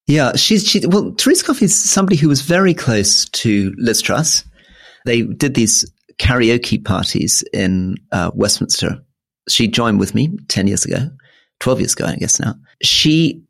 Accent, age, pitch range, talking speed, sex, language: British, 40-59, 105-140 Hz, 165 wpm, male, English